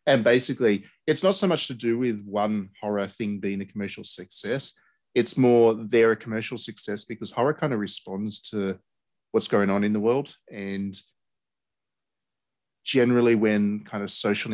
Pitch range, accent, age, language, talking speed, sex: 100-115 Hz, Australian, 30-49, English, 165 wpm, male